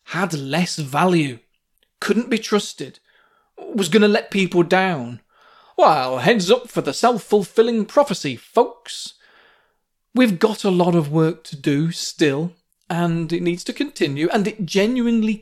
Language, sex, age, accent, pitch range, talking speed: English, male, 40-59, British, 170-245 Hz, 145 wpm